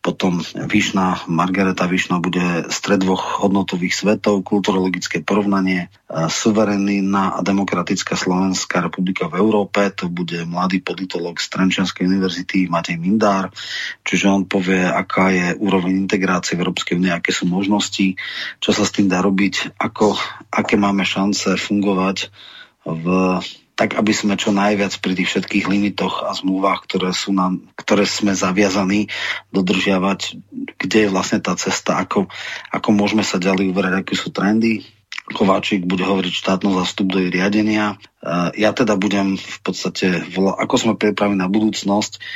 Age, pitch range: 30-49, 95-100 Hz